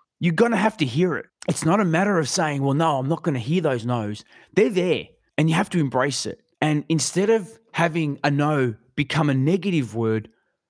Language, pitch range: English, 125-160 Hz